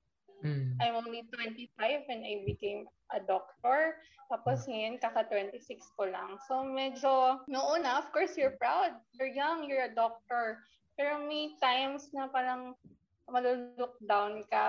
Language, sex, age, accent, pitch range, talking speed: Filipino, female, 20-39, native, 215-280 Hz, 125 wpm